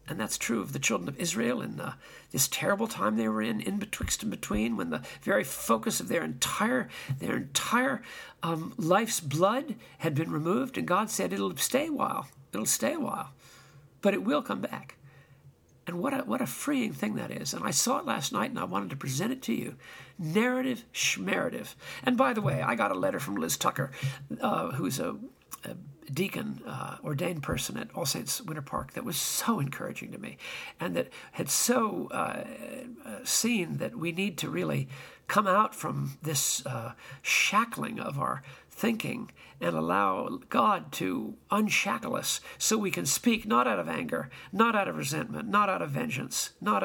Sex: male